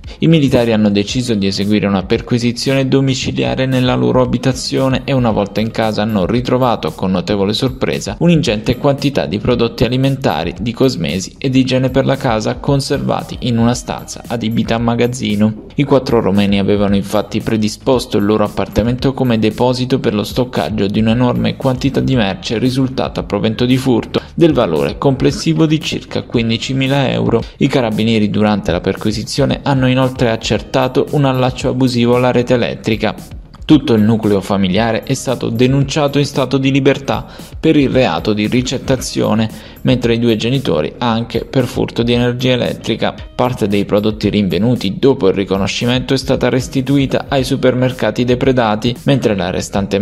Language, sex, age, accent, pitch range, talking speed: Italian, male, 20-39, native, 105-130 Hz, 155 wpm